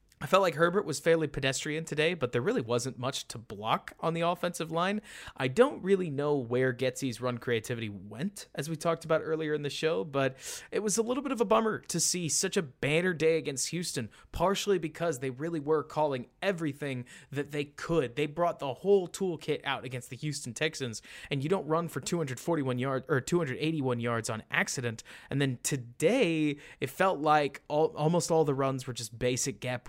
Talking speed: 200 wpm